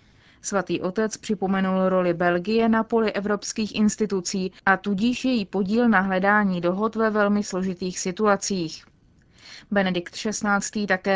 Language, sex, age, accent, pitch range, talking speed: Czech, female, 20-39, native, 180-210 Hz, 125 wpm